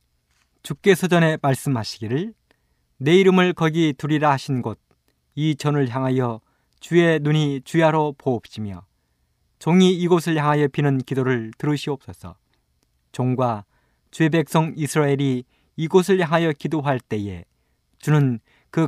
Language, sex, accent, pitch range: Korean, male, native, 105-160 Hz